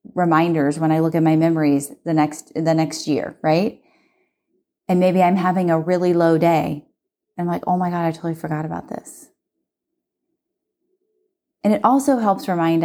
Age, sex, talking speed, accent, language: 30-49, female, 175 wpm, American, English